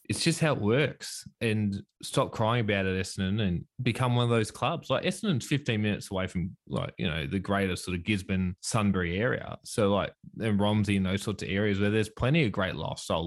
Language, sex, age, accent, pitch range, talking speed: English, male, 20-39, Australian, 95-120 Hz, 215 wpm